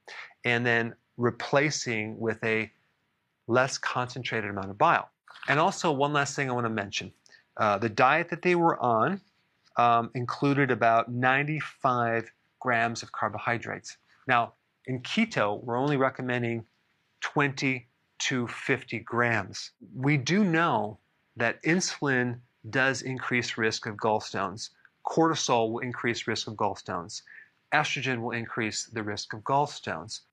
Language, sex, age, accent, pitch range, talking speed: English, male, 40-59, American, 115-135 Hz, 130 wpm